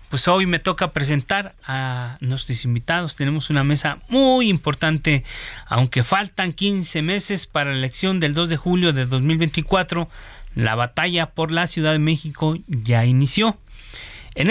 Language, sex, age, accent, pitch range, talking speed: Spanish, male, 40-59, Mexican, 130-180 Hz, 150 wpm